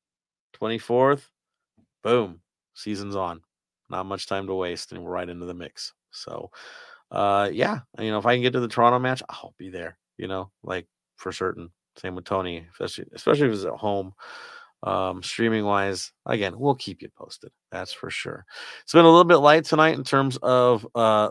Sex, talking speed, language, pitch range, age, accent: male, 190 wpm, English, 95-125 Hz, 30-49, American